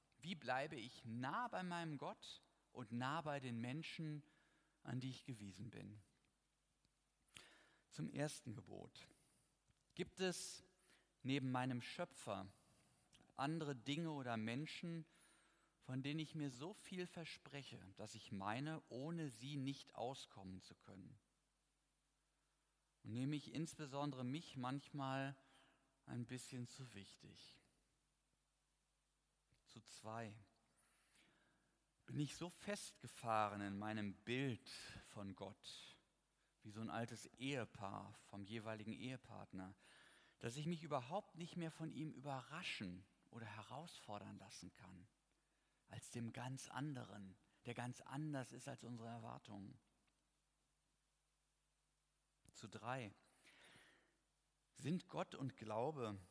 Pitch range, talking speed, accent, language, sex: 110-150 Hz, 110 wpm, German, German, male